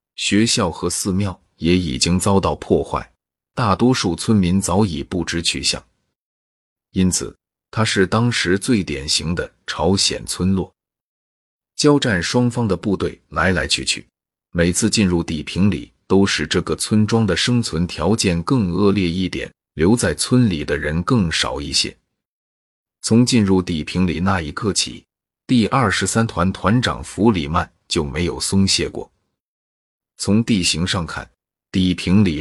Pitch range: 85-105 Hz